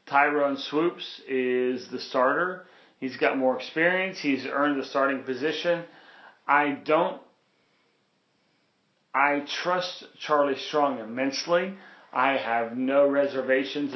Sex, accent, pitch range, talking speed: male, American, 130-145 Hz, 110 wpm